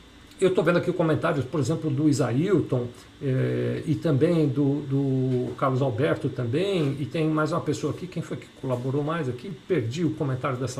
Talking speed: 185 wpm